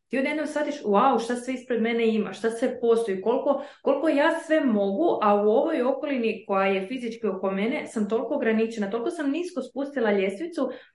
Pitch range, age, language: 205-260 Hz, 20-39, Croatian